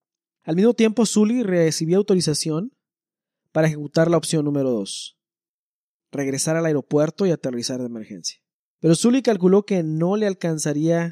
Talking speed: 140 wpm